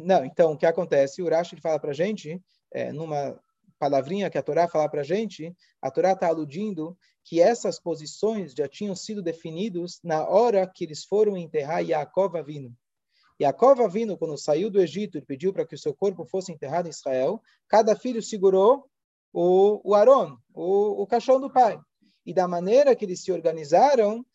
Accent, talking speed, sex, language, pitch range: Brazilian, 180 wpm, male, Portuguese, 155-210 Hz